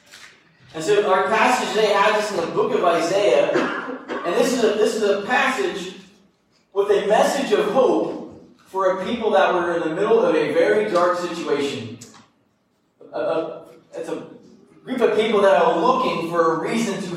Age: 30-49